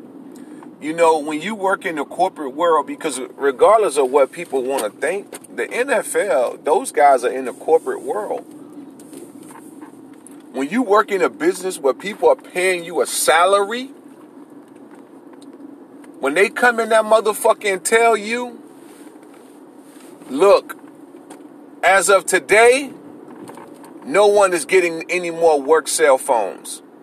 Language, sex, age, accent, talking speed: English, male, 40-59, American, 135 wpm